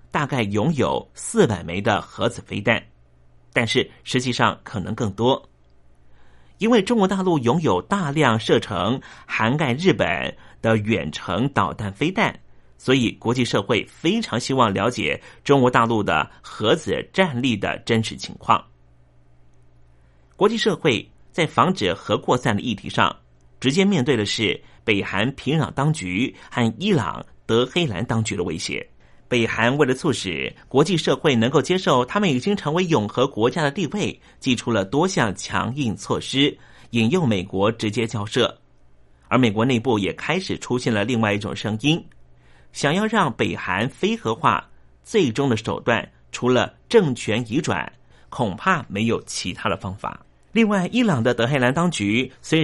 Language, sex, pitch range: Chinese, male, 95-145 Hz